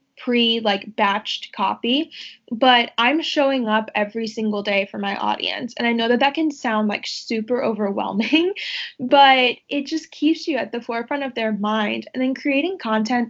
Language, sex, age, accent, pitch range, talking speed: English, female, 10-29, American, 210-260 Hz, 175 wpm